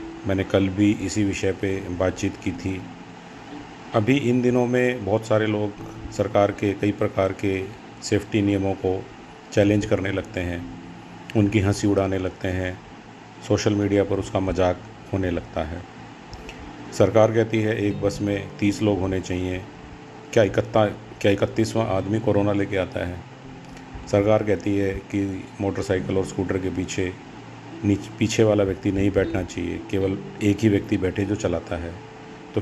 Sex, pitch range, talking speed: male, 95-110 Hz, 155 wpm